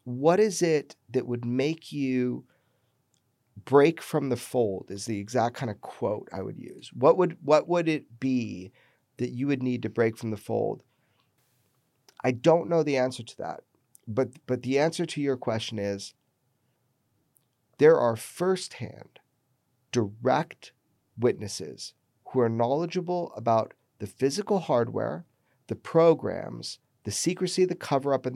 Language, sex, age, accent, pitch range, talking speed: English, male, 40-59, American, 115-140 Hz, 145 wpm